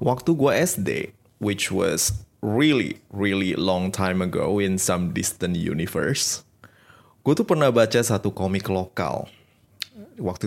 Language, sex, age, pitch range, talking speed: Indonesian, male, 20-39, 100-120 Hz, 125 wpm